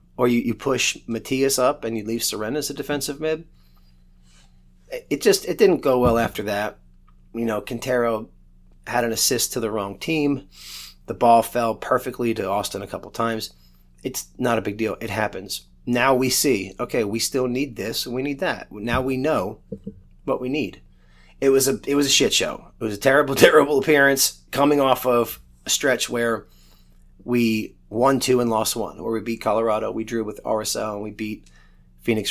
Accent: American